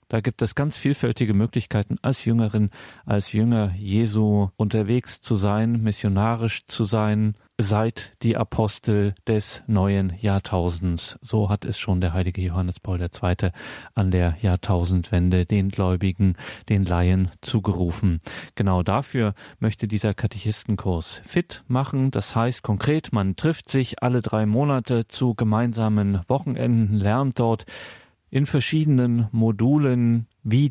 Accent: German